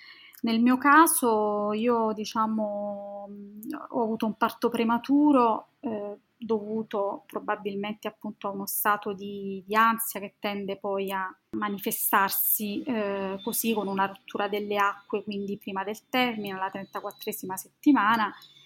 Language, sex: Italian, female